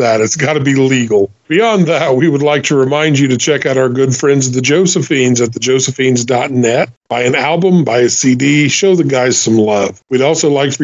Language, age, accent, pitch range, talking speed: English, 40-59, American, 125-150 Hz, 215 wpm